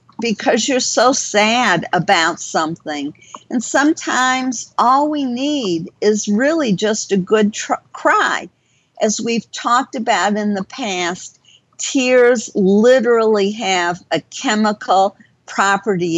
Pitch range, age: 185-250 Hz, 50-69